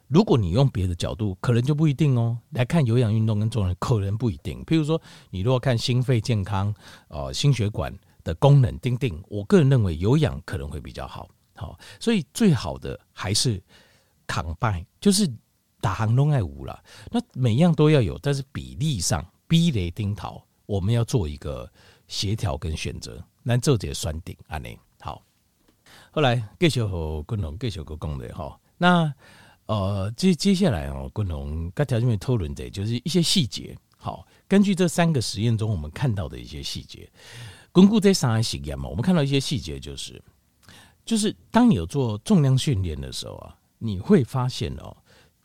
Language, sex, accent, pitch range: Chinese, male, native, 95-140 Hz